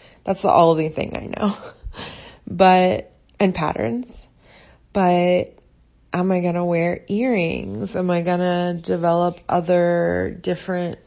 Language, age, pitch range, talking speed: English, 30-49, 155-195 Hz, 125 wpm